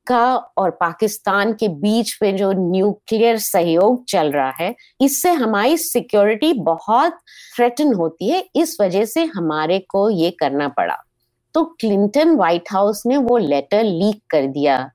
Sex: female